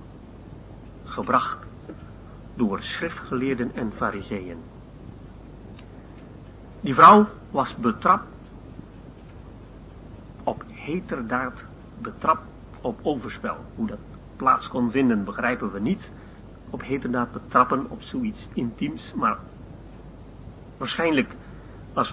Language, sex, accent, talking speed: Dutch, male, Dutch, 85 wpm